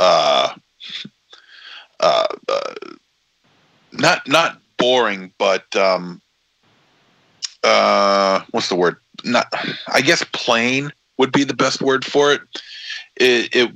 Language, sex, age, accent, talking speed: English, male, 40-59, American, 105 wpm